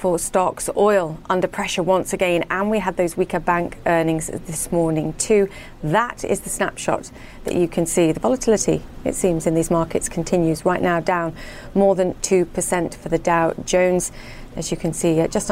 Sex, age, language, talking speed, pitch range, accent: female, 30-49, English, 185 wpm, 165-190 Hz, British